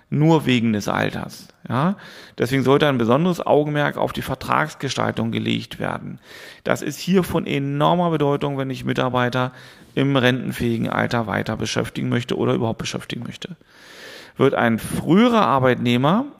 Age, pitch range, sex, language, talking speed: 40-59, 120-145 Hz, male, German, 140 wpm